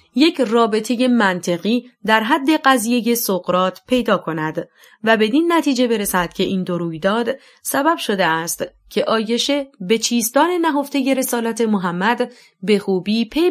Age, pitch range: 30-49, 200-265 Hz